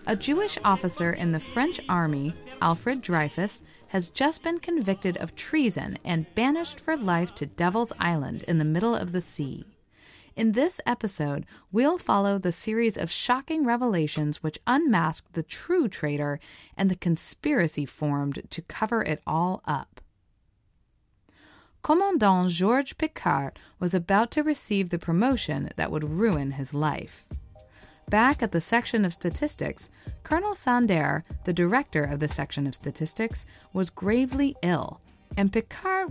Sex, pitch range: female, 155-240 Hz